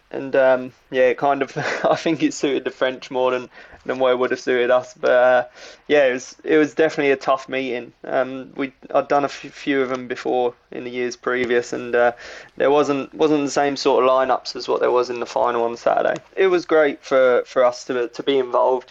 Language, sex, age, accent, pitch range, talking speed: English, male, 20-39, British, 125-145 Hz, 235 wpm